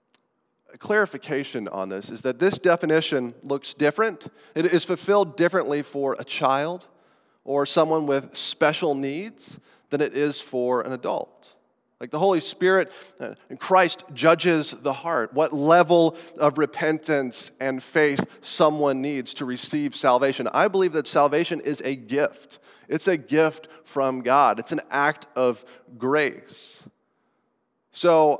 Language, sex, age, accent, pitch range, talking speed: English, male, 30-49, American, 135-170 Hz, 135 wpm